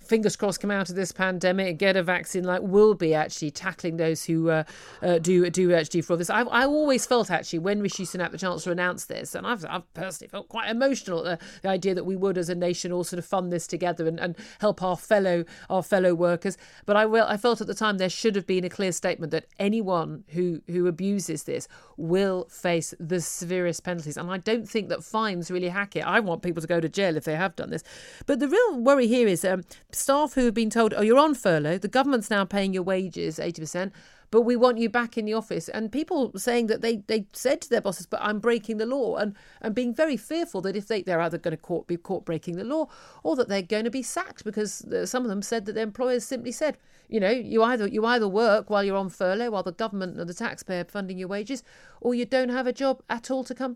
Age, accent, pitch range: 40-59, British, 180-230 Hz